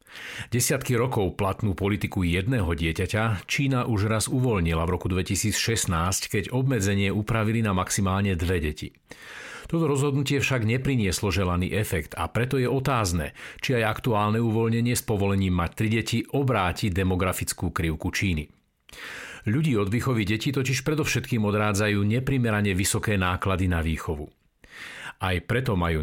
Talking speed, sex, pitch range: 135 wpm, male, 95-120 Hz